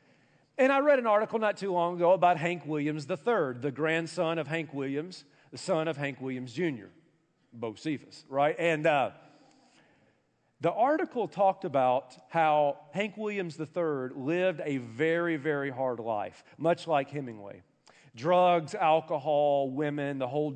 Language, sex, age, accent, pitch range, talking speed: English, male, 40-59, American, 125-170 Hz, 145 wpm